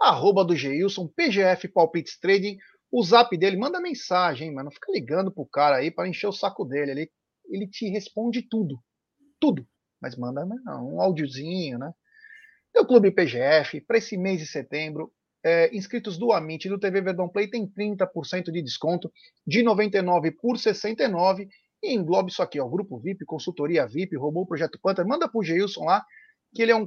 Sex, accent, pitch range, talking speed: male, Brazilian, 160-210 Hz, 180 wpm